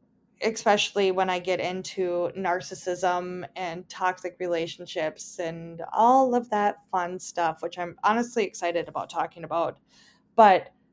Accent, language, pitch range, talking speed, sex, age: American, English, 185-220 Hz, 125 wpm, female, 20-39